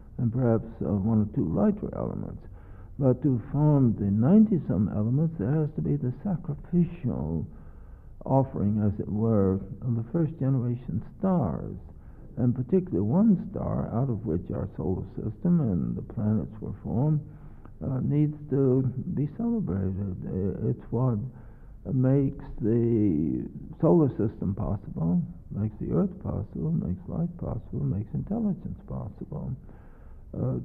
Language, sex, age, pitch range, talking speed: English, male, 60-79, 100-140 Hz, 130 wpm